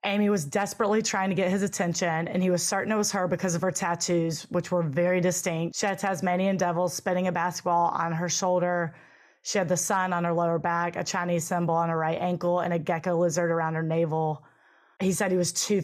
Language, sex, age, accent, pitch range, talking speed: English, female, 20-39, American, 165-190 Hz, 230 wpm